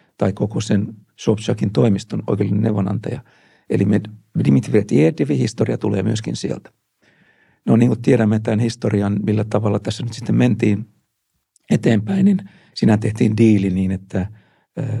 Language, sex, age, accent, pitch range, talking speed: Finnish, male, 60-79, native, 105-120 Hz, 130 wpm